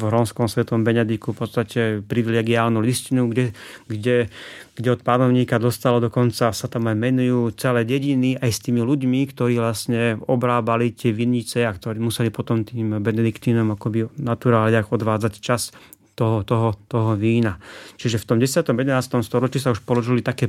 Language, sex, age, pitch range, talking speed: Slovak, male, 30-49, 115-125 Hz, 160 wpm